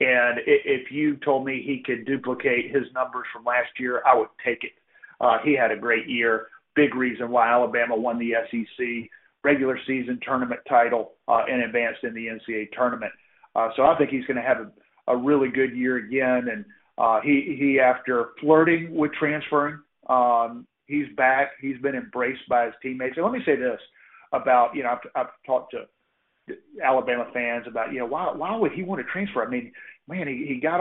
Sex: male